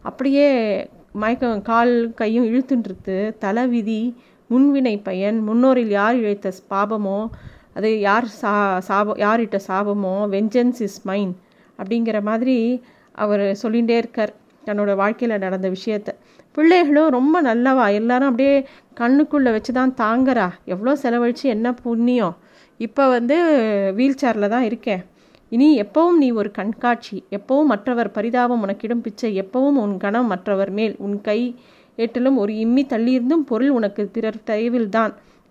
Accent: native